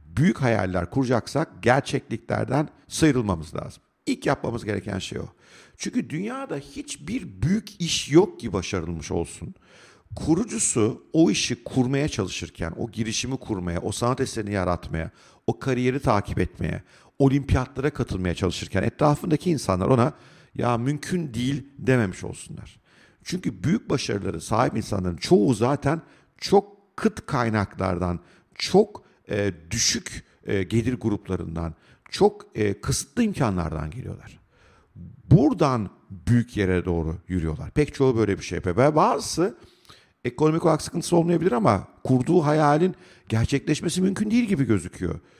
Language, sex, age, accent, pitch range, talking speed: Turkish, male, 50-69, native, 100-150 Hz, 120 wpm